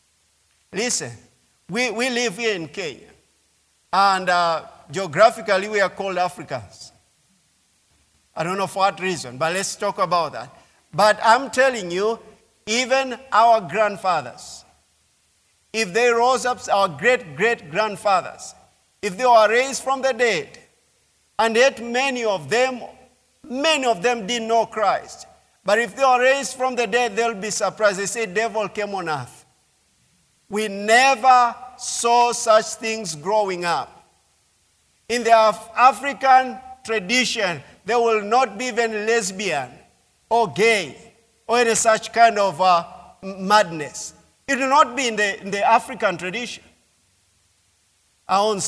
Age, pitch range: 50-69, 185-240 Hz